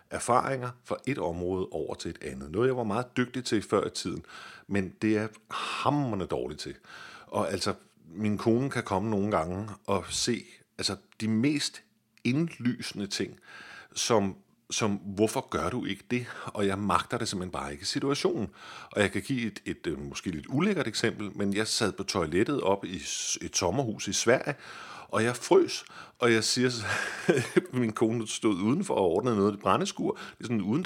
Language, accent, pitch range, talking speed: Danish, native, 105-140 Hz, 185 wpm